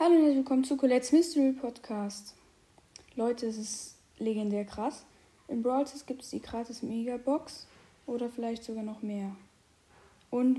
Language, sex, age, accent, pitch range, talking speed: German, female, 10-29, German, 230-275 Hz, 155 wpm